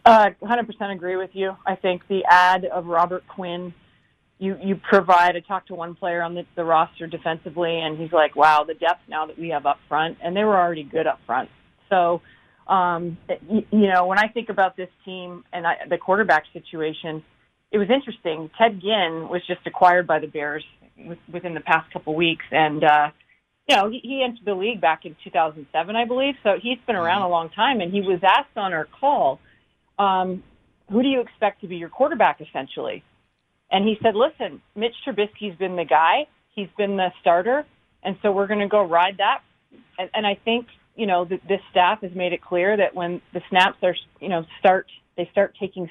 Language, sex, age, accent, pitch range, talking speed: English, female, 40-59, American, 170-205 Hz, 205 wpm